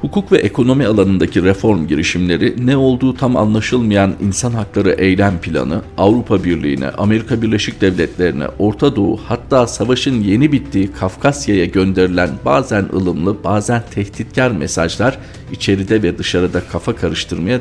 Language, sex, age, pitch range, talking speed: Turkish, male, 50-69, 90-115 Hz, 125 wpm